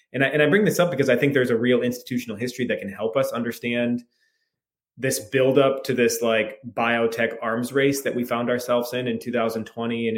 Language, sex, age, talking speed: English, male, 20-39, 205 wpm